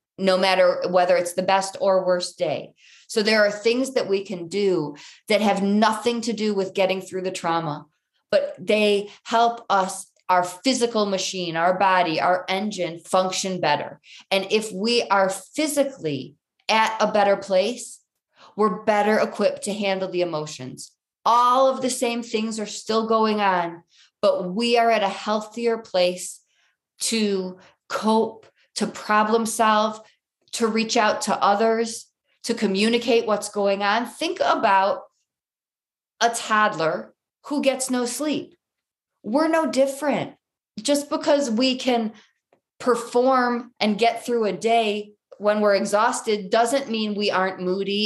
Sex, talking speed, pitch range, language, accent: female, 145 wpm, 190-230 Hz, English, American